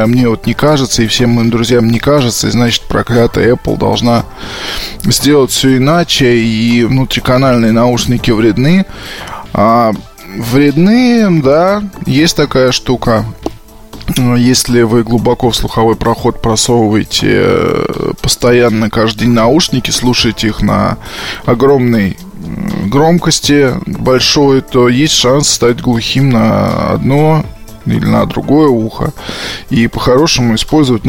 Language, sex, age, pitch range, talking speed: Russian, male, 20-39, 115-140 Hz, 115 wpm